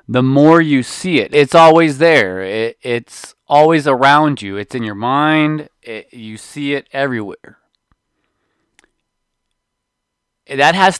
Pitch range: 135-170 Hz